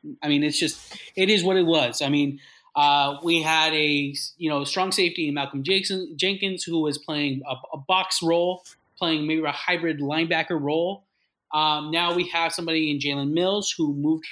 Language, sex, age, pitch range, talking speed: English, male, 30-49, 145-170 Hz, 195 wpm